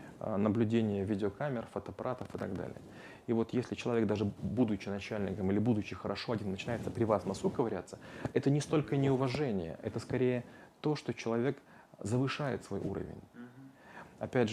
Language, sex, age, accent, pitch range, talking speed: Russian, male, 30-49, native, 105-125 Hz, 145 wpm